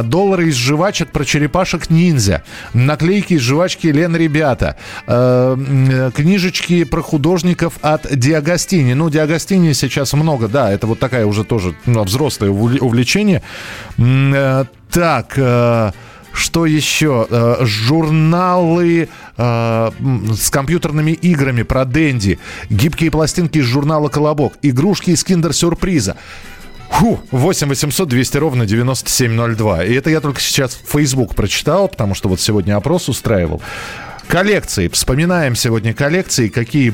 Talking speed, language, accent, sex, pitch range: 110 wpm, Russian, native, male, 105-155 Hz